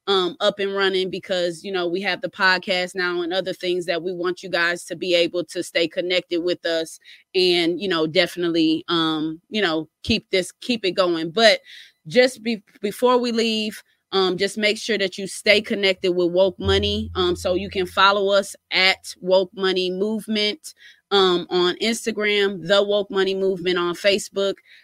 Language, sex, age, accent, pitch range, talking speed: English, female, 20-39, American, 180-205 Hz, 180 wpm